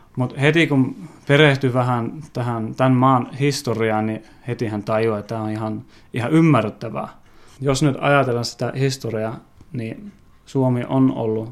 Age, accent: 20-39, native